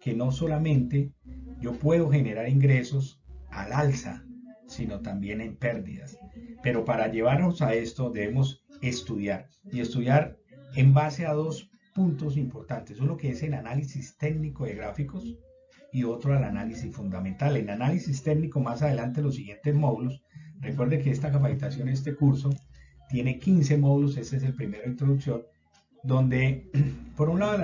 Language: Spanish